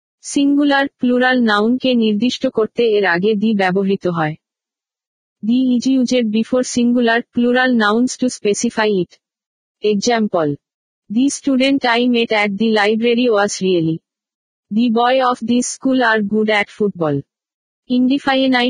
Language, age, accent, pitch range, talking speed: Bengali, 50-69, native, 205-245 Hz, 80 wpm